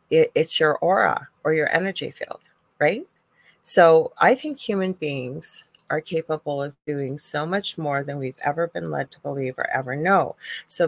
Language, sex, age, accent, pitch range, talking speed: English, female, 30-49, American, 150-190 Hz, 170 wpm